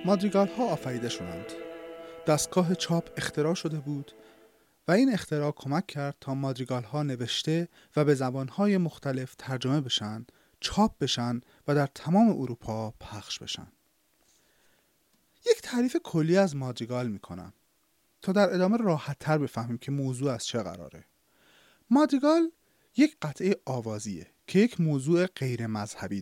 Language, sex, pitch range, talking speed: English, male, 120-180 Hz, 135 wpm